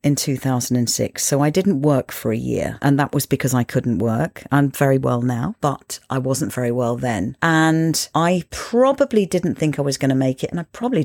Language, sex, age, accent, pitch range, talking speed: English, female, 40-59, British, 135-185 Hz, 215 wpm